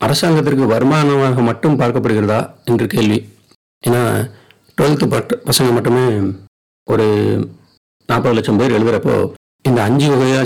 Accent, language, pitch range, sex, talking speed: native, Tamil, 105-140 Hz, male, 110 wpm